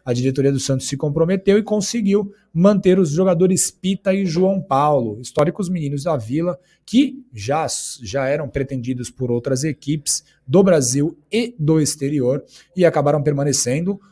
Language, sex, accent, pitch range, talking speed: Portuguese, male, Brazilian, 140-190 Hz, 150 wpm